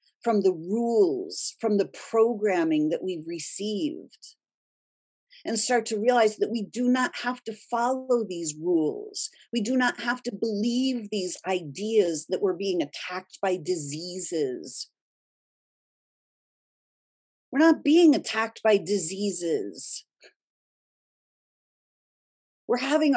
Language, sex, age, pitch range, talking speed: English, female, 40-59, 180-250 Hz, 115 wpm